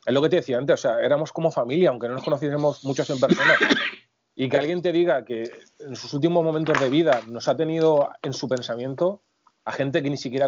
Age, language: 30-49, Spanish